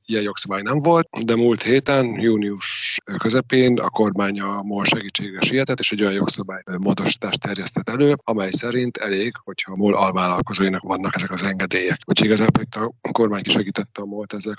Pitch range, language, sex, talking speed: 95-120 Hz, Hungarian, male, 170 wpm